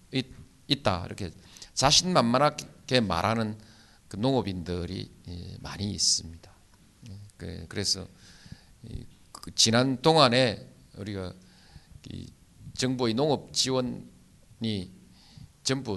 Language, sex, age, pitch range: Korean, male, 50-69, 95-125 Hz